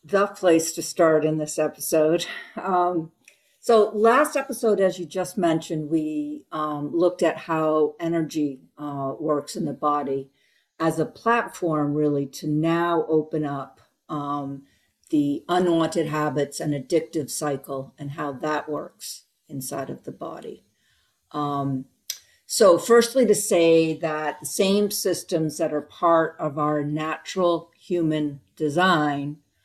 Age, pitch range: 50-69, 150-180 Hz